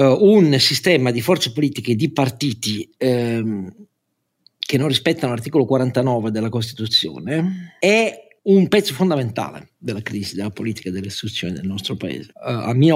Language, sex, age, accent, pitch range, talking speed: Italian, male, 50-69, native, 105-135 Hz, 155 wpm